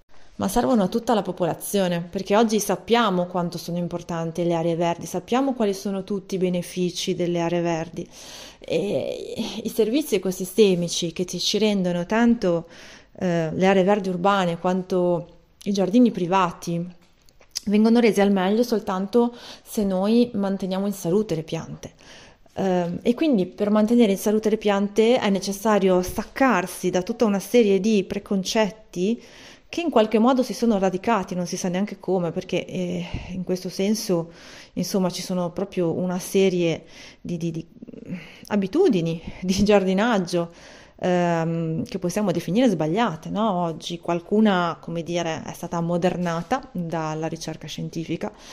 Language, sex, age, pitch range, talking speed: Italian, female, 30-49, 175-215 Hz, 145 wpm